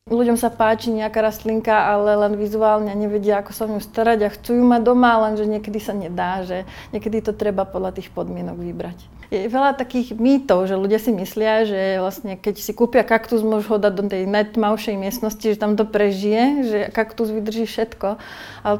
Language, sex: Slovak, female